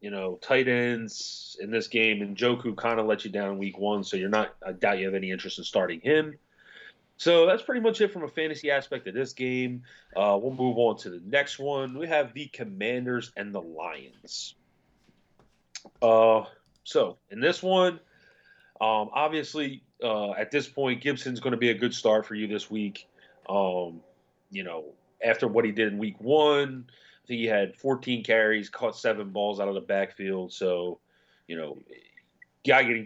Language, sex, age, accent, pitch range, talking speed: English, male, 30-49, American, 100-130 Hz, 190 wpm